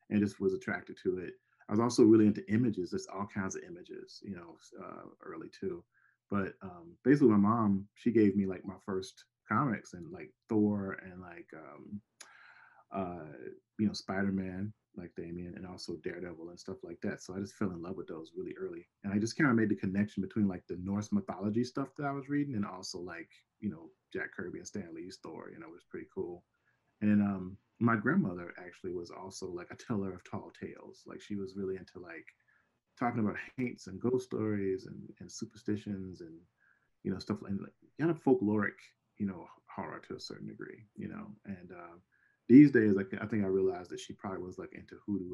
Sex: male